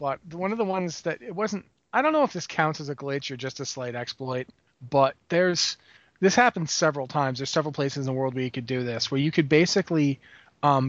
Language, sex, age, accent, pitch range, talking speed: English, male, 30-49, American, 135-175 Hz, 240 wpm